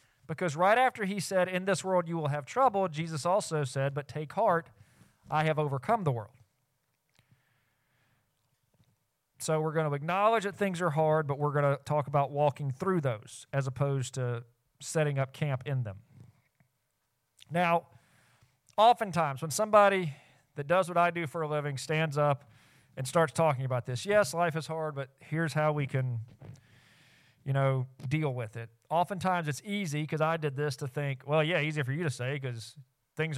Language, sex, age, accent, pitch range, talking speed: English, male, 40-59, American, 130-170 Hz, 180 wpm